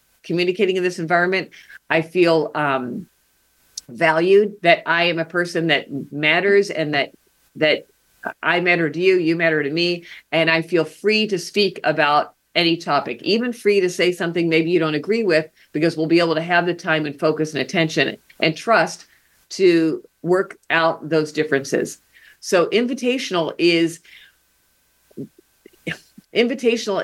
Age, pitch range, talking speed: 50-69, 155-190 Hz, 150 wpm